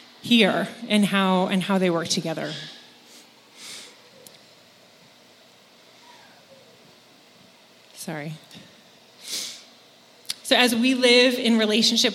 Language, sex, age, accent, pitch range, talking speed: English, female, 30-49, American, 200-250 Hz, 75 wpm